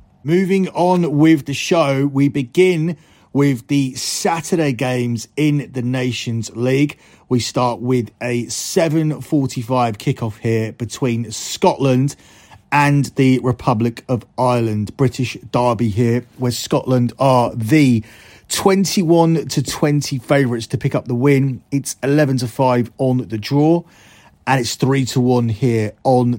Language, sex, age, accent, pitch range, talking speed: English, male, 30-49, British, 120-145 Hz, 135 wpm